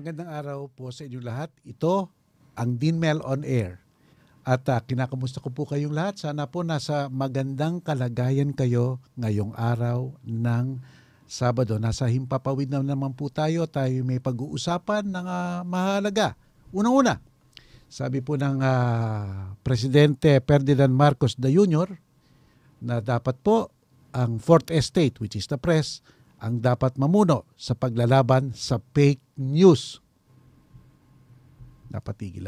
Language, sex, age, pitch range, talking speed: Filipino, male, 50-69, 125-155 Hz, 130 wpm